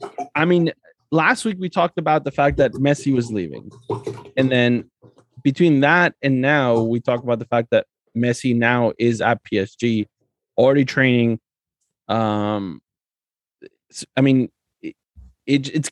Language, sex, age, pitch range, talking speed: English, male, 20-39, 105-135 Hz, 135 wpm